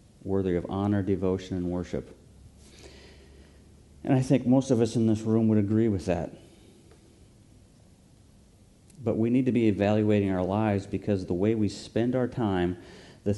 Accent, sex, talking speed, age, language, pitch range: American, male, 155 wpm, 50-69, English, 90-110 Hz